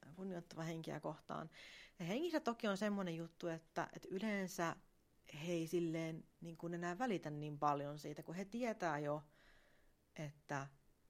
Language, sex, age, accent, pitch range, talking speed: Finnish, female, 30-49, native, 155-190 Hz, 135 wpm